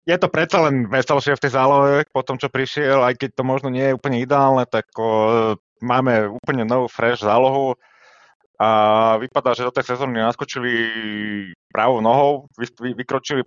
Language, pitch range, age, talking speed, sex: Slovak, 105-135 Hz, 30-49, 155 wpm, male